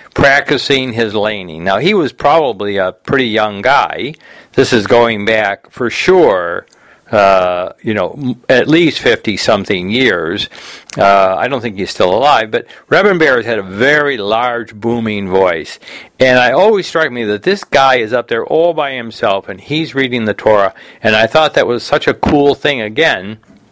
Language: English